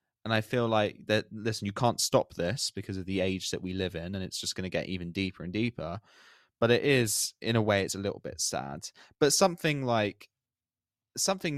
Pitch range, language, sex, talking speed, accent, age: 85-105 Hz, English, male, 225 wpm, British, 20-39